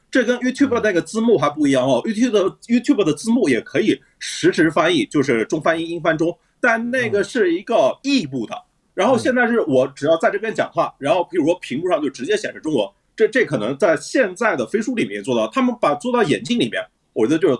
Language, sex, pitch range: Chinese, male, 180-265 Hz